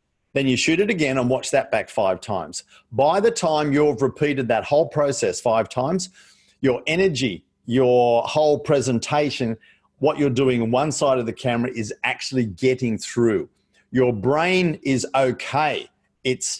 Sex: male